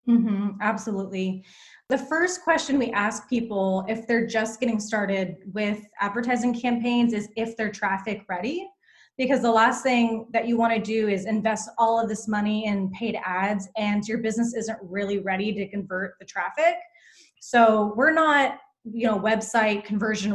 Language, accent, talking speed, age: English, American, 170 wpm, 20-39